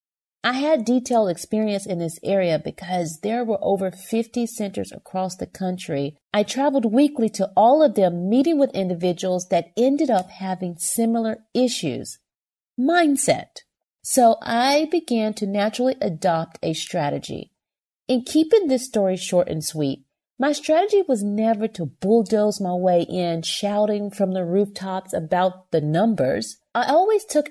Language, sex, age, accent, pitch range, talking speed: English, female, 40-59, American, 185-250 Hz, 145 wpm